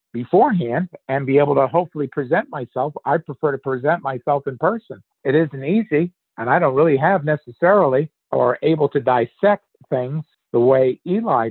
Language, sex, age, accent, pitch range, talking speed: English, male, 50-69, American, 145-175 Hz, 165 wpm